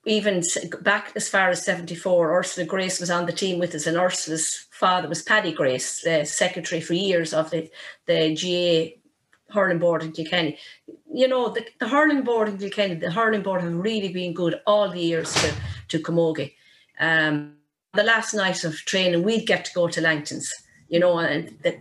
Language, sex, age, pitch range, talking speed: English, female, 40-59, 165-195 Hz, 185 wpm